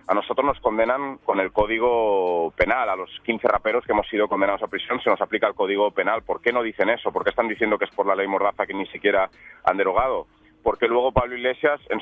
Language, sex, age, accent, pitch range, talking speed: Spanish, male, 30-49, Spanish, 110-155 Hz, 245 wpm